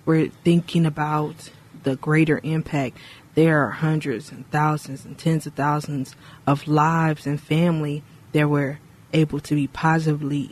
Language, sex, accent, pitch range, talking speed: English, female, American, 150-165 Hz, 145 wpm